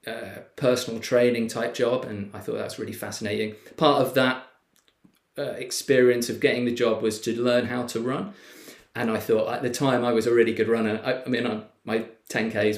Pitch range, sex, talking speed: 105-120 Hz, male, 215 wpm